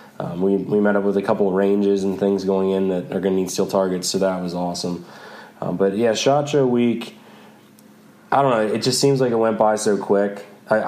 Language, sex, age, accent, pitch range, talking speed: English, male, 20-39, American, 95-110 Hz, 245 wpm